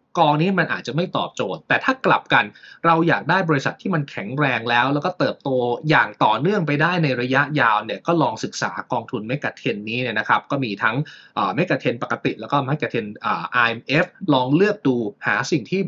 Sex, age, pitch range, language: male, 20-39, 125-165 Hz, Thai